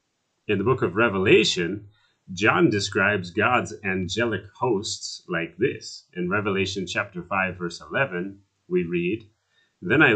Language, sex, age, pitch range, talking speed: English, male, 30-49, 95-115 Hz, 130 wpm